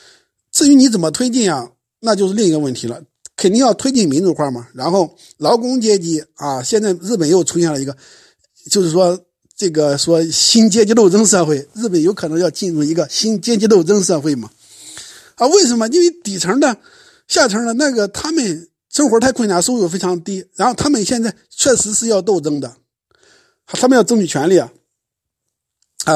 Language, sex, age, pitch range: Chinese, male, 50-69, 160-225 Hz